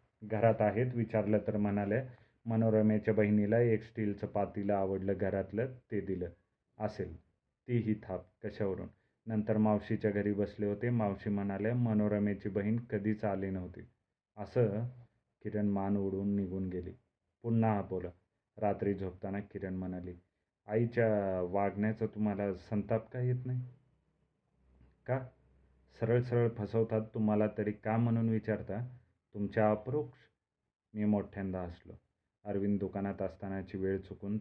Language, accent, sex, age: Marathi, native, male, 30-49